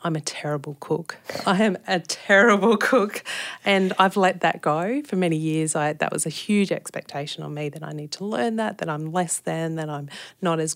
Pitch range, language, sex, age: 150-185 Hz, English, female, 30-49